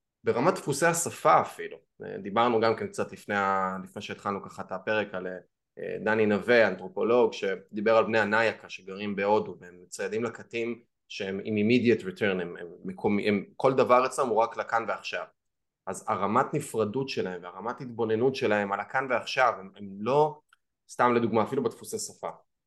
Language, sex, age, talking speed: Hebrew, male, 20-39, 150 wpm